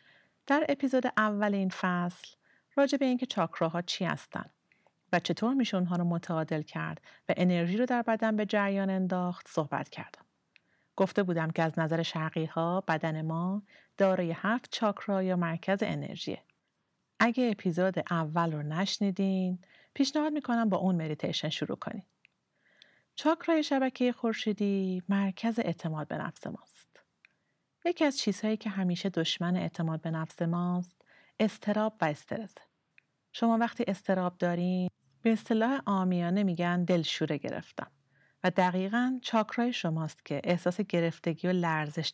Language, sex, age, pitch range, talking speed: Persian, female, 40-59, 160-210 Hz, 135 wpm